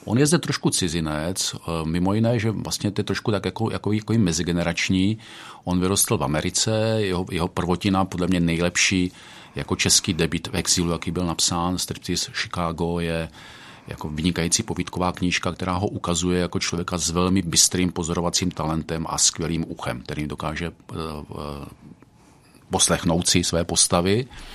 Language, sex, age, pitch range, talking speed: Czech, male, 40-59, 85-105 Hz, 150 wpm